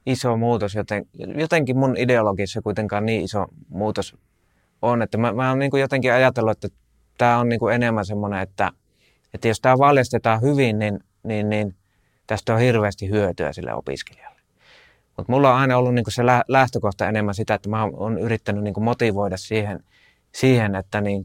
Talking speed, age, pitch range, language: 165 wpm, 30-49, 100-120 Hz, Finnish